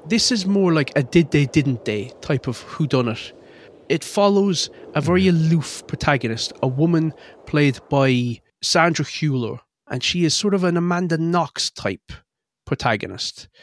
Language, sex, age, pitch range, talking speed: English, male, 30-49, 130-175 Hz, 155 wpm